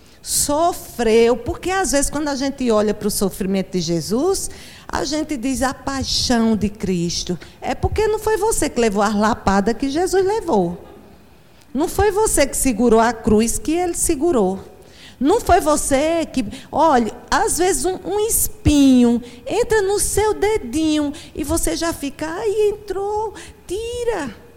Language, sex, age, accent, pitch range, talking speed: Portuguese, female, 50-69, Brazilian, 220-345 Hz, 155 wpm